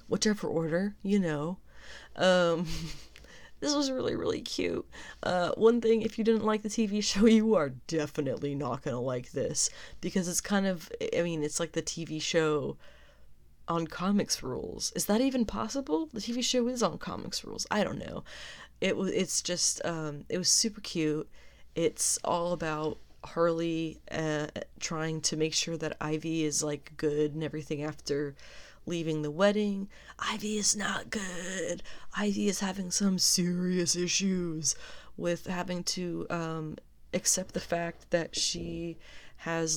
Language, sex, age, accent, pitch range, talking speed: English, female, 20-39, American, 155-195 Hz, 160 wpm